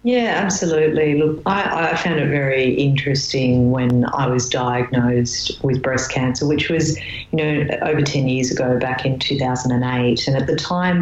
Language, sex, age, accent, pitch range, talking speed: English, female, 40-59, Australian, 125-145 Hz, 185 wpm